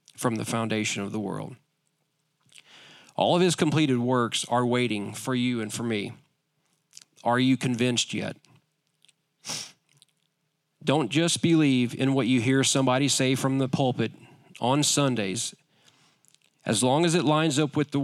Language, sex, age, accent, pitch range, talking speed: English, male, 40-59, American, 120-150 Hz, 145 wpm